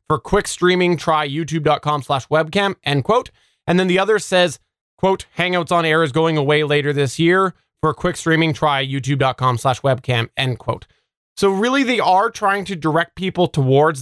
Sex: male